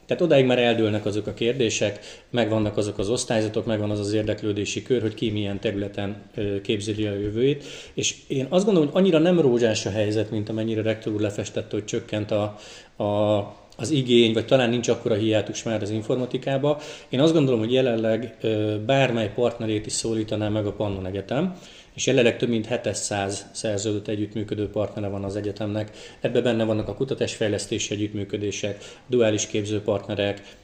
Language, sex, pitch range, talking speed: Hungarian, male, 105-120 Hz, 165 wpm